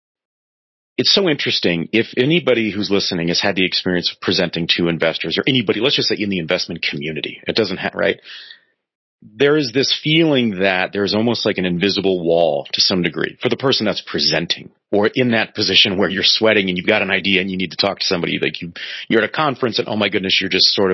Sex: male